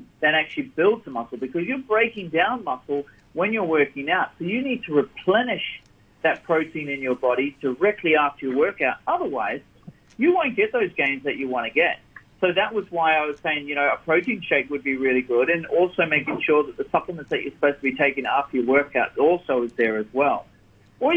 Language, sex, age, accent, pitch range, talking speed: English, male, 40-59, Australian, 135-185 Hz, 220 wpm